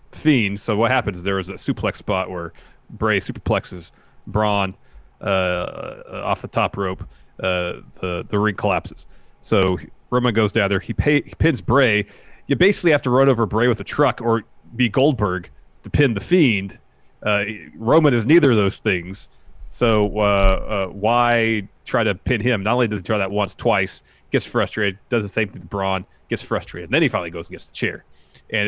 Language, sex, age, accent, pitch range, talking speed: English, male, 30-49, American, 95-120 Hz, 195 wpm